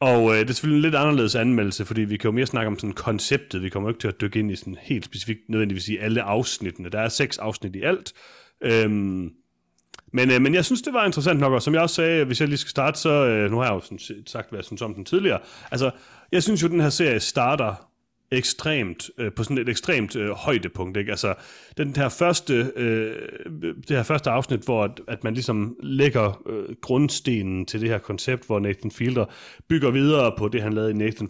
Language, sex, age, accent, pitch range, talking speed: Danish, male, 30-49, native, 100-130 Hz, 240 wpm